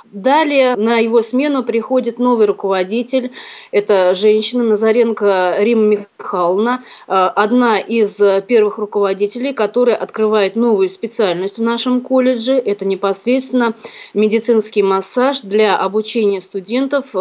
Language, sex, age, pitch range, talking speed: Russian, female, 30-49, 205-245 Hz, 105 wpm